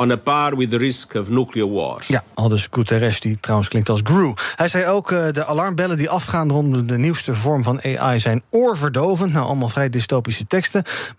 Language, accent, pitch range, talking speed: Dutch, Dutch, 125-165 Hz, 155 wpm